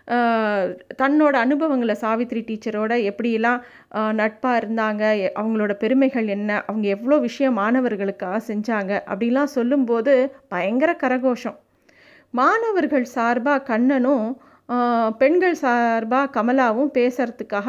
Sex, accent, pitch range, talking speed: female, native, 225-280 Hz, 90 wpm